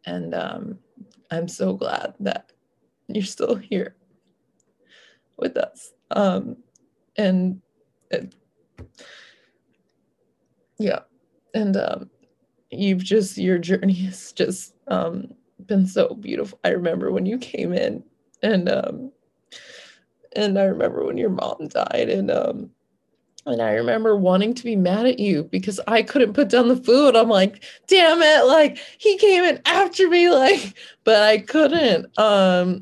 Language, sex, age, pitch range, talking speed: English, female, 20-39, 185-255 Hz, 135 wpm